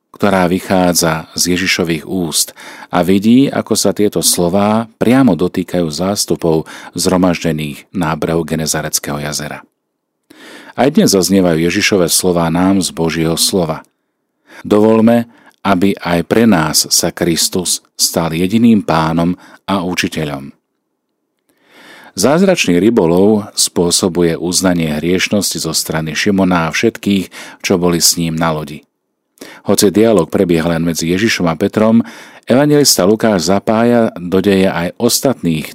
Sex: male